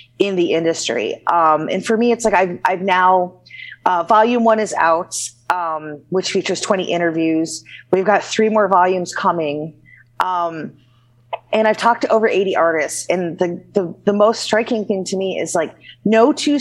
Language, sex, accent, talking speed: English, female, American, 175 wpm